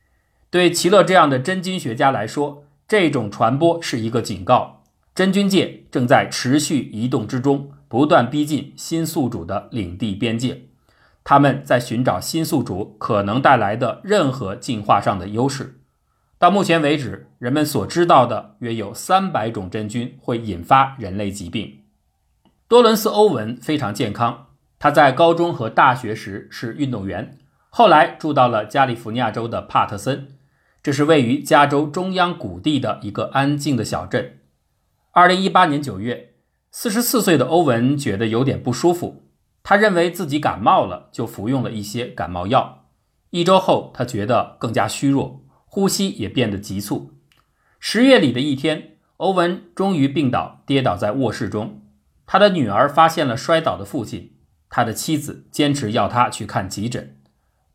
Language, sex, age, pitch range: Chinese, male, 50-69, 105-165 Hz